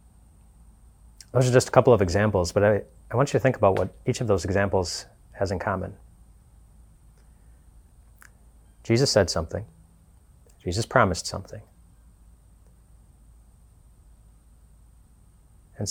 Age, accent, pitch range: 30-49, American, 85-100 Hz